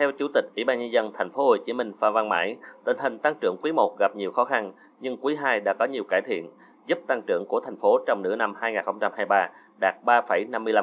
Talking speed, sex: 240 wpm, male